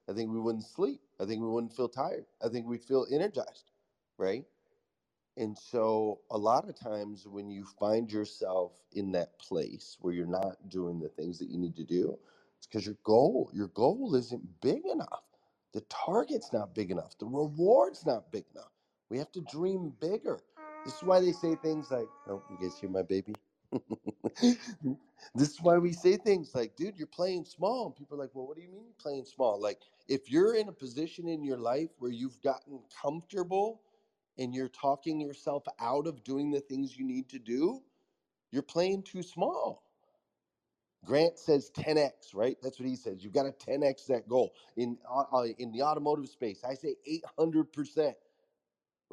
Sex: male